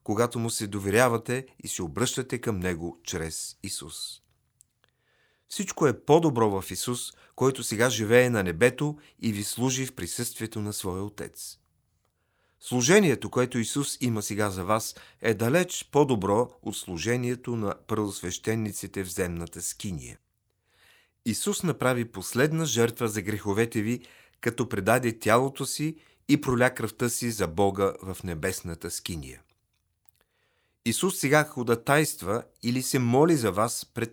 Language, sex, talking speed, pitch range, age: Bulgarian, male, 130 wpm, 100-125 Hz, 40-59